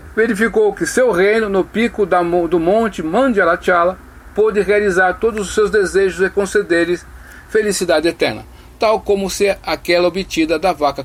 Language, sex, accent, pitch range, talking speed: Portuguese, male, Brazilian, 165-215 Hz, 145 wpm